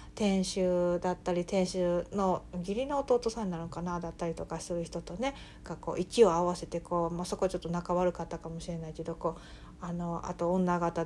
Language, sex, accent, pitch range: Japanese, female, native, 170-240 Hz